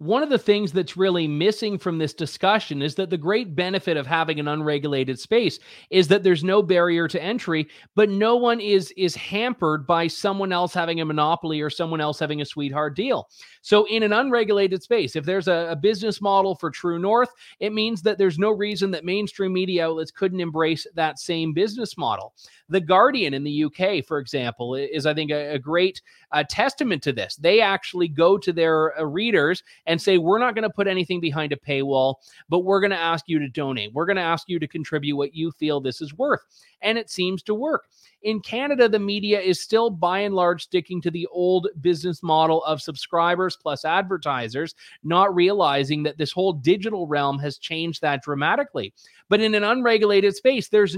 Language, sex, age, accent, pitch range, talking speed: English, male, 30-49, American, 155-200 Hz, 200 wpm